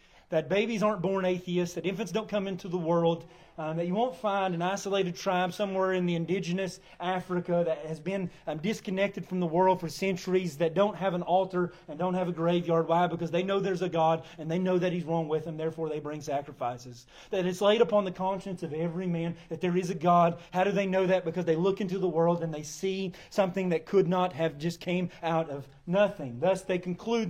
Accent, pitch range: American, 170-205 Hz